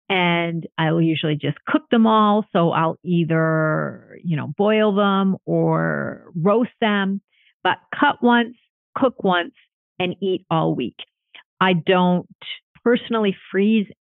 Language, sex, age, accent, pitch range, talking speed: English, female, 50-69, American, 165-220 Hz, 135 wpm